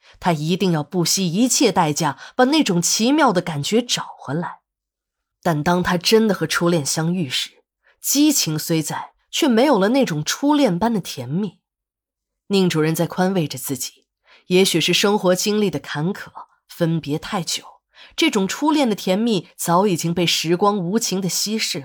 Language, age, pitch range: Chinese, 20-39, 165-220 Hz